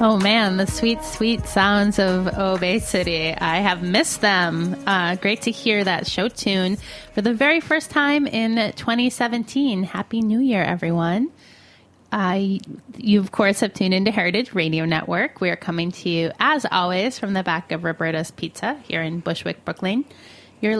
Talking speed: 165 wpm